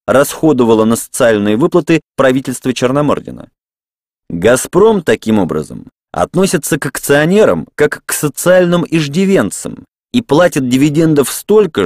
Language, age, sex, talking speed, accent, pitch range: Russian, 30-49, male, 100 wpm, native, 125-165 Hz